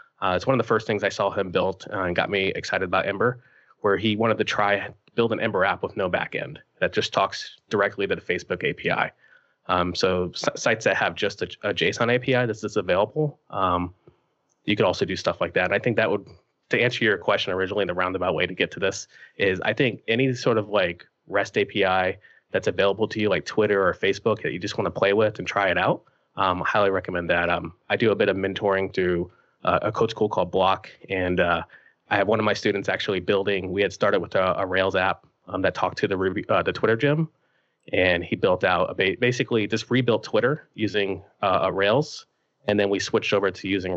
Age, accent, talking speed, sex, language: 20-39, American, 235 wpm, male, English